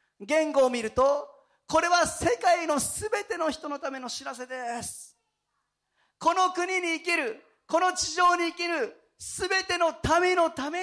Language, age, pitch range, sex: Japanese, 40-59, 200-315 Hz, male